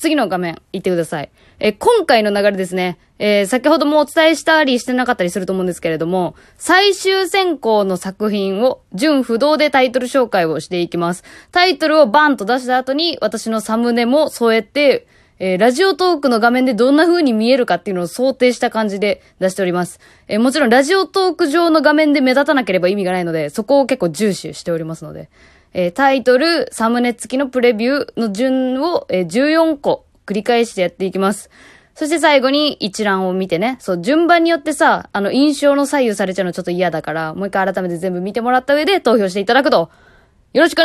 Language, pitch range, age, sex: Japanese, 190-310 Hz, 20-39, female